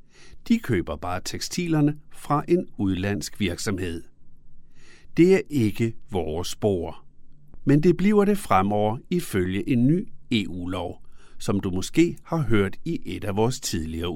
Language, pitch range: Danish, 90-150 Hz